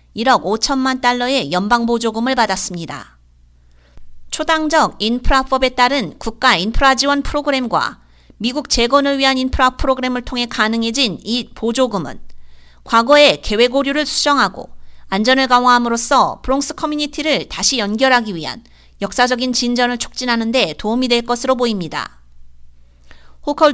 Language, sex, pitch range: Korean, female, 200-270 Hz